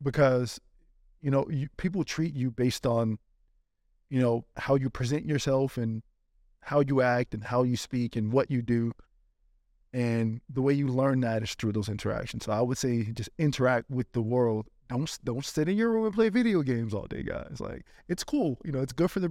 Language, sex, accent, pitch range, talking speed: English, male, American, 115-150 Hz, 210 wpm